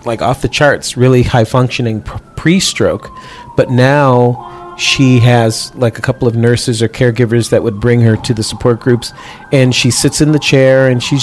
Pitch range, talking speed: 125-150 Hz, 185 wpm